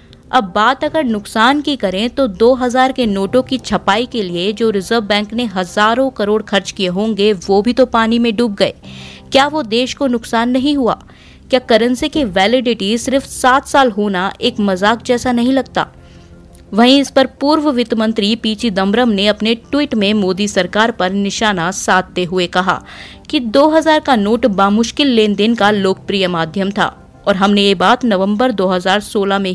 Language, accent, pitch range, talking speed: Hindi, native, 195-255 Hz, 175 wpm